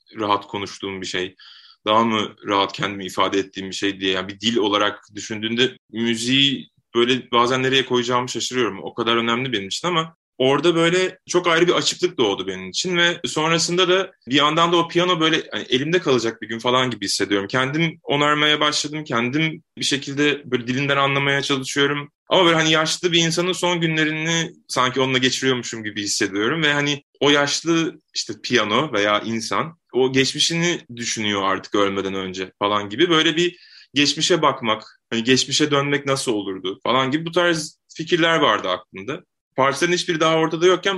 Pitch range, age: 115-160 Hz, 20-39